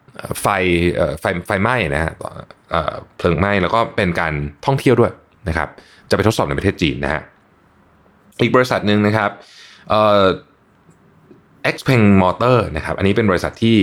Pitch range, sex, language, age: 80-110 Hz, male, Thai, 20-39